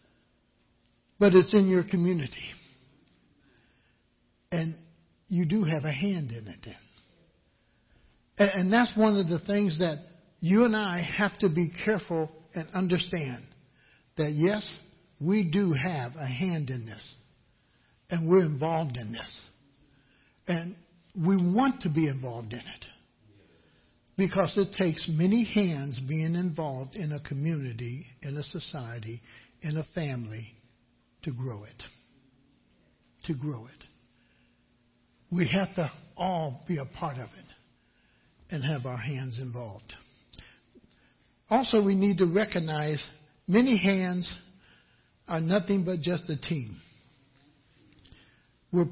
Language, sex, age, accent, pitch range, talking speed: English, male, 60-79, American, 120-180 Hz, 125 wpm